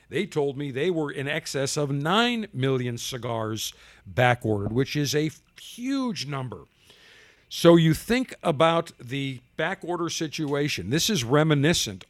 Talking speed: 135 wpm